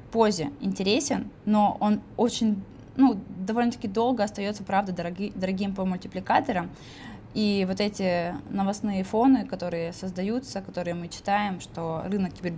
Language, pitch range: Russian, 175-205 Hz